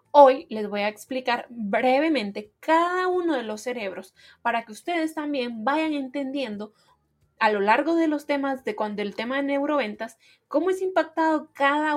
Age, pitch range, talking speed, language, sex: 20-39, 225-300 Hz, 165 wpm, Spanish, female